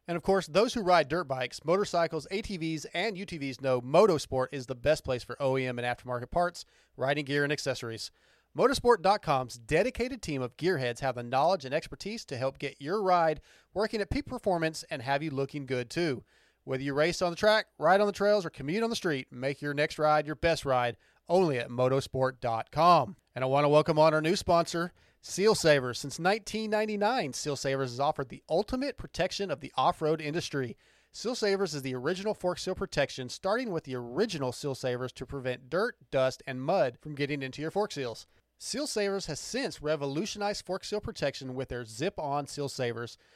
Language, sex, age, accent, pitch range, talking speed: English, male, 30-49, American, 130-190 Hz, 195 wpm